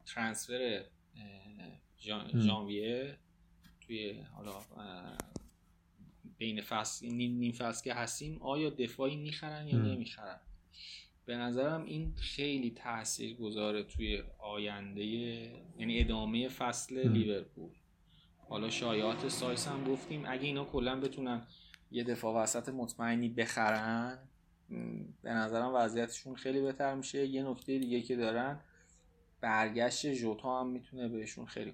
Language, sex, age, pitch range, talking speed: Persian, male, 20-39, 105-125 Hz, 110 wpm